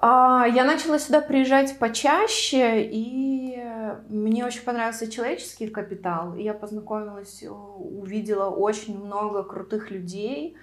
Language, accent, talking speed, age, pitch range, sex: Russian, native, 100 wpm, 20-39, 185-225 Hz, female